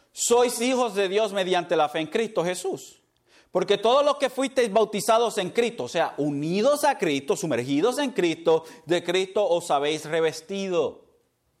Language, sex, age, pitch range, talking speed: Spanish, male, 30-49, 125-180 Hz, 160 wpm